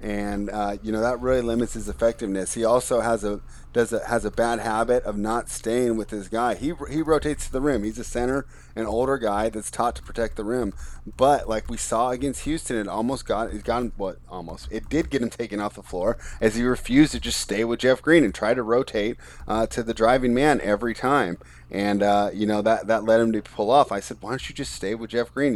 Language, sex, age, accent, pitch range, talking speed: English, male, 30-49, American, 100-115 Hz, 250 wpm